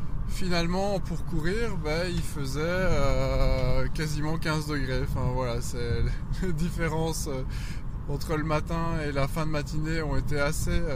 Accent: French